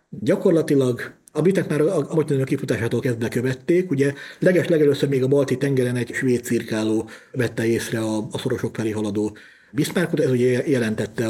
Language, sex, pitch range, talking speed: Hungarian, male, 115-140 Hz, 165 wpm